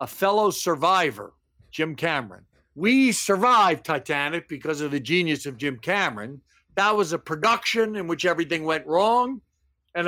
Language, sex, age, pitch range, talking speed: English, male, 50-69, 140-195 Hz, 150 wpm